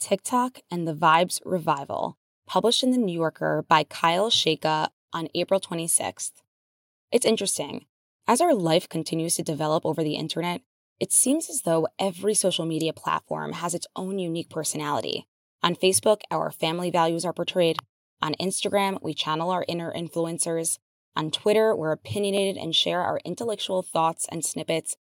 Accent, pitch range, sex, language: American, 165-205 Hz, female, English